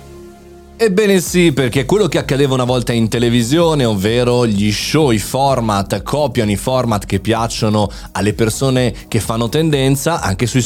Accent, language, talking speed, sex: native, Italian, 150 wpm, male